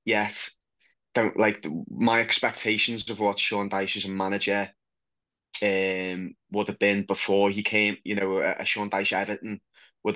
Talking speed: 160 wpm